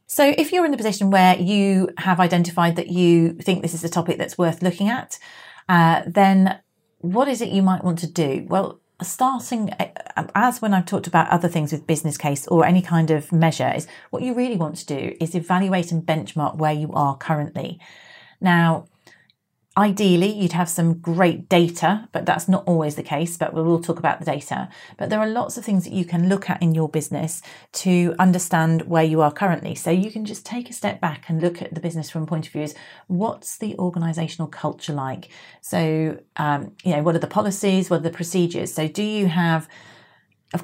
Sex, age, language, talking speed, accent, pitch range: female, 40-59, English, 210 wpm, British, 160-185 Hz